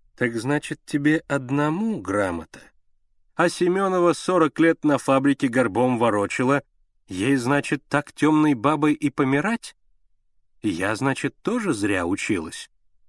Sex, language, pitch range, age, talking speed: male, Russian, 105-155 Hz, 30-49, 115 wpm